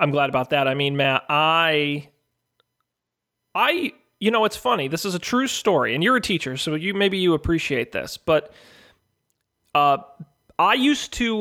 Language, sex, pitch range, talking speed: English, male, 140-185 Hz, 175 wpm